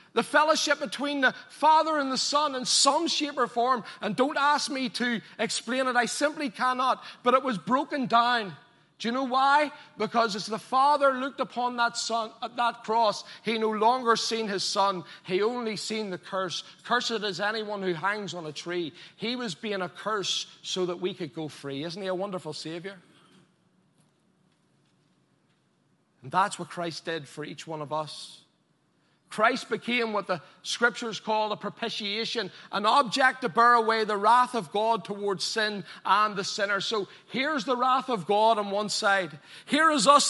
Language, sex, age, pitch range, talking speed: English, male, 40-59, 180-245 Hz, 180 wpm